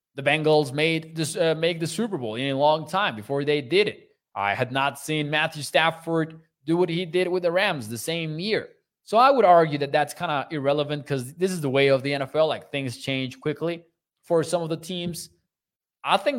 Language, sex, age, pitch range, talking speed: English, male, 20-39, 135-165 Hz, 225 wpm